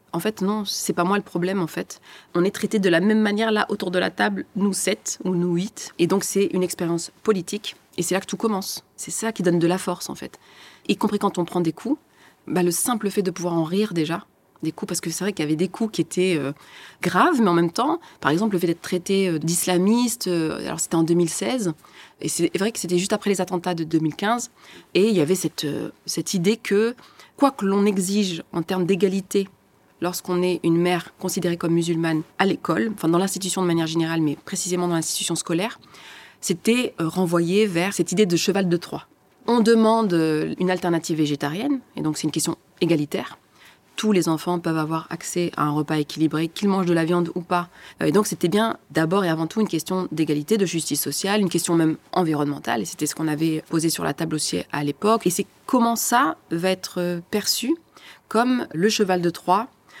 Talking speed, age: 220 wpm, 20-39